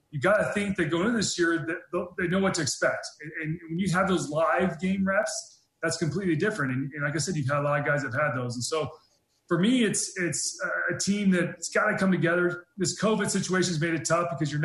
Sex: male